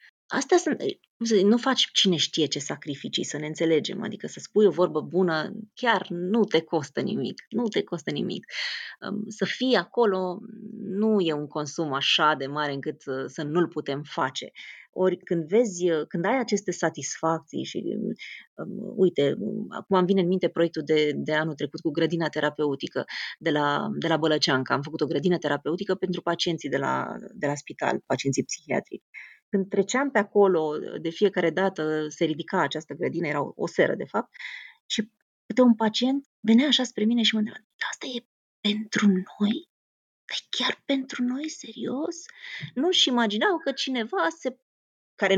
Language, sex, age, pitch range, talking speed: Romanian, female, 20-39, 160-230 Hz, 165 wpm